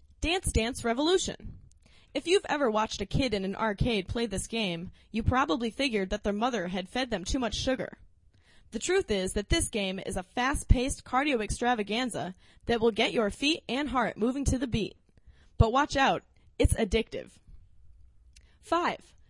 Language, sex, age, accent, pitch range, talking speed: English, female, 20-39, American, 195-275 Hz, 170 wpm